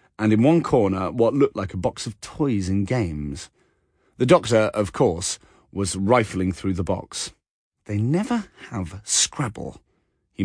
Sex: male